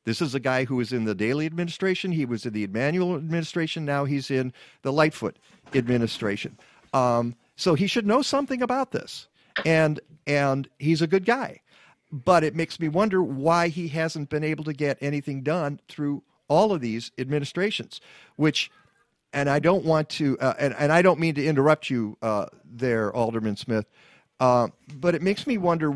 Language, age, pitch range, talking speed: English, 50-69, 125-170 Hz, 190 wpm